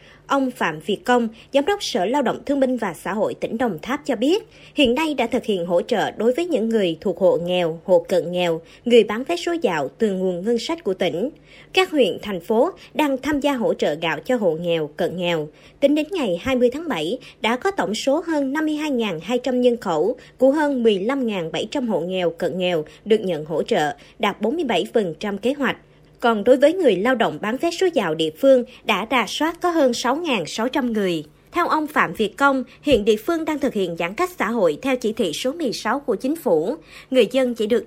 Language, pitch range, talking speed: Vietnamese, 200-280 Hz, 215 wpm